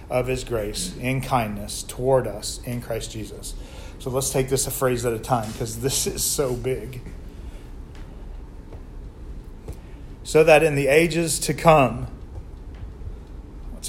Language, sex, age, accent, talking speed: English, male, 40-59, American, 140 wpm